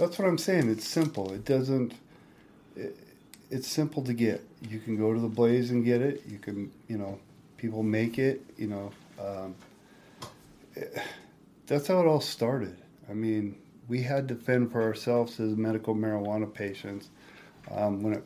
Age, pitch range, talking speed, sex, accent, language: 40-59, 105-120 Hz, 170 wpm, male, American, English